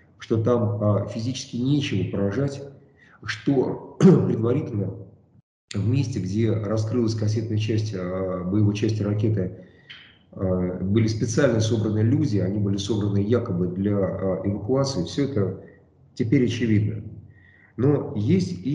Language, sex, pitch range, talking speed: Russian, male, 100-120 Hz, 100 wpm